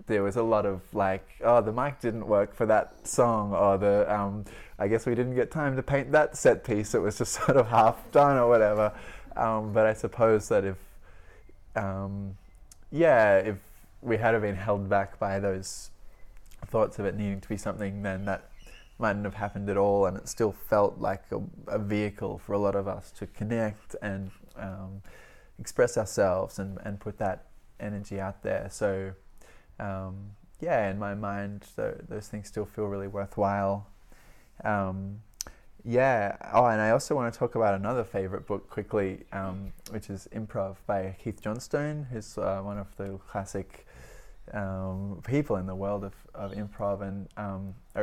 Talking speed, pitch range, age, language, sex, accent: 180 wpm, 95-110 Hz, 20-39, English, male, Australian